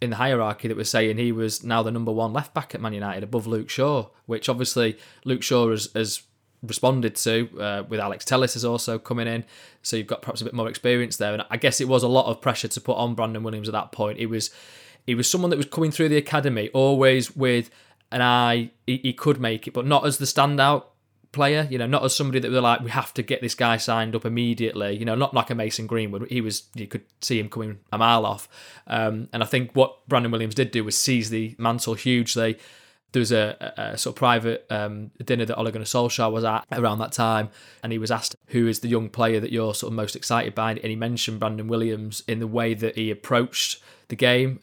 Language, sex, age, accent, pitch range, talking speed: English, male, 20-39, British, 110-130 Hz, 245 wpm